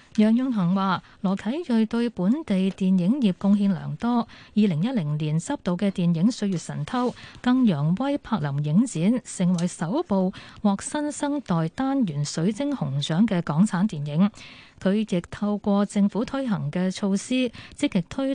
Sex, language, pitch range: female, Chinese, 170-230 Hz